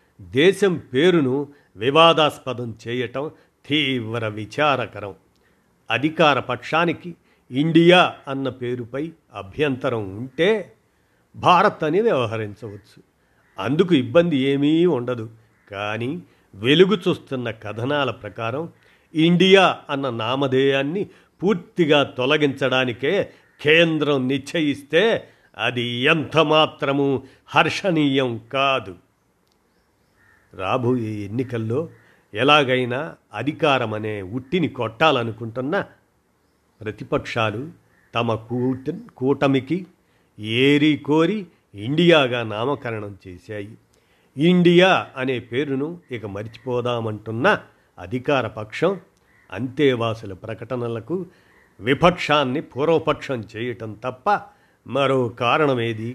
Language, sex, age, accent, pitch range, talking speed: Telugu, male, 50-69, native, 115-150 Hz, 75 wpm